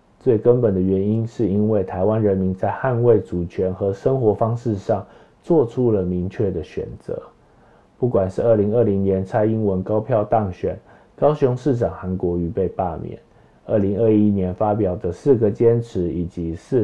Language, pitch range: Chinese, 95-120 Hz